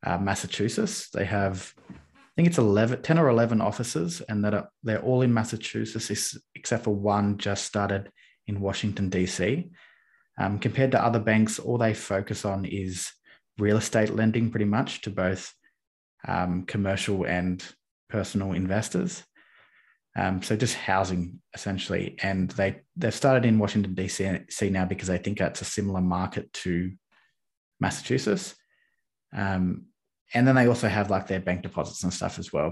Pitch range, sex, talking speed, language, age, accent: 95-110 Hz, male, 160 wpm, English, 20-39, Australian